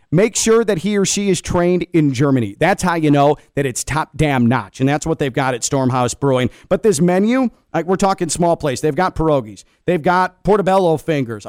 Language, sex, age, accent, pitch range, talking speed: English, male, 40-59, American, 140-195 Hz, 220 wpm